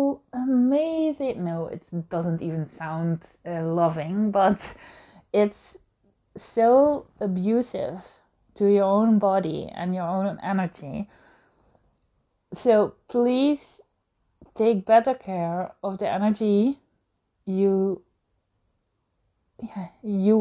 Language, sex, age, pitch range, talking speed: Dutch, female, 30-49, 175-230 Hz, 90 wpm